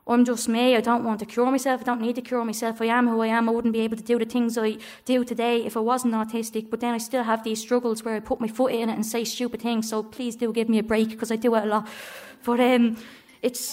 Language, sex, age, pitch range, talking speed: English, female, 20-39, 230-255 Hz, 300 wpm